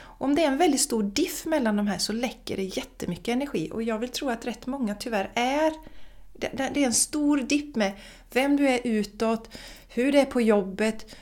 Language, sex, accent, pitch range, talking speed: Swedish, female, native, 185-255 Hz, 215 wpm